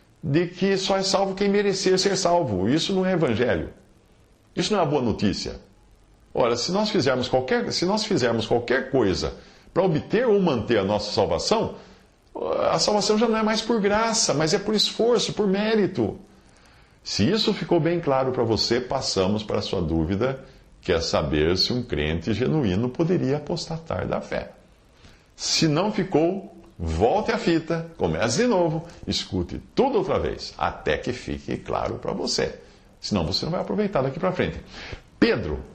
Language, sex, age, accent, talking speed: Portuguese, male, 50-69, Brazilian, 170 wpm